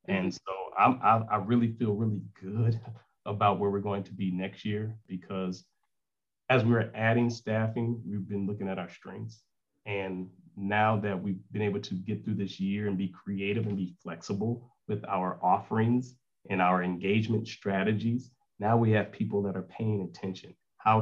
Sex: male